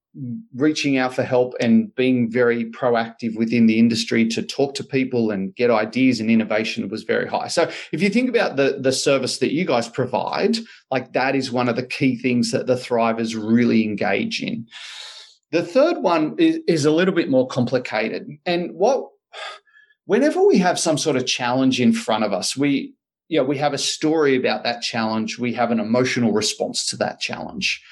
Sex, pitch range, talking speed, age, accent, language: male, 120-165 Hz, 195 wpm, 30-49, Australian, English